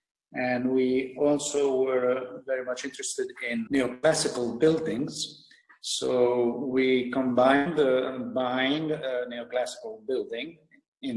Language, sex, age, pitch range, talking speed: English, male, 50-69, 120-165 Hz, 100 wpm